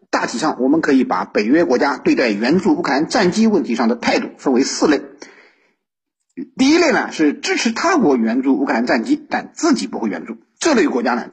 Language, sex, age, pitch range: Chinese, male, 50-69, 210-300 Hz